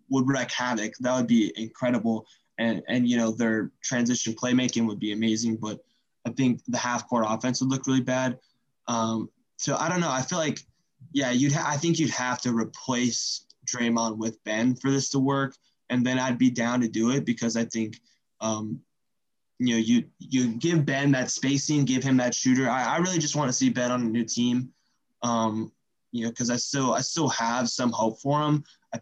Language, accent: English, American